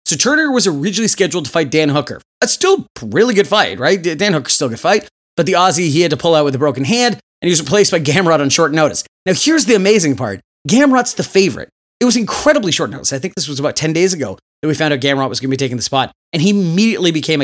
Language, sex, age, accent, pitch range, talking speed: English, male, 30-49, American, 140-200 Hz, 275 wpm